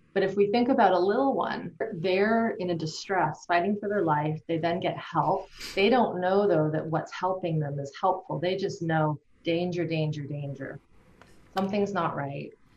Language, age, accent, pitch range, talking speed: English, 30-49, American, 160-190 Hz, 185 wpm